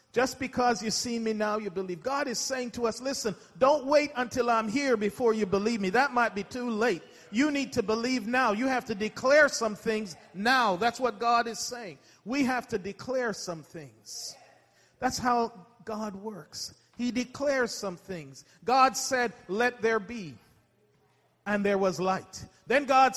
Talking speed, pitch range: 180 wpm, 190-250 Hz